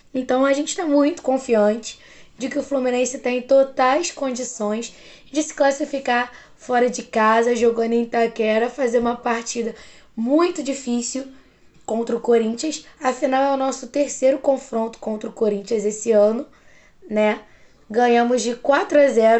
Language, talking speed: Portuguese, 140 wpm